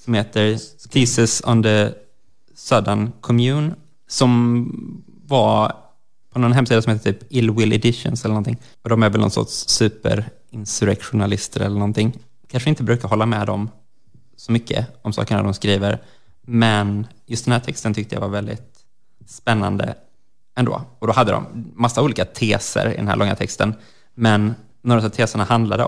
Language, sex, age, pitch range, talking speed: Swedish, male, 20-39, 100-120 Hz, 160 wpm